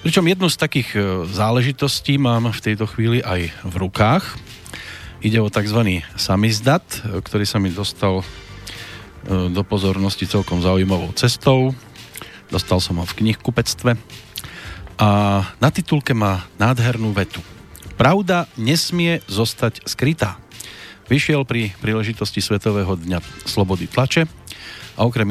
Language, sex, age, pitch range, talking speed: Slovak, male, 40-59, 95-130 Hz, 115 wpm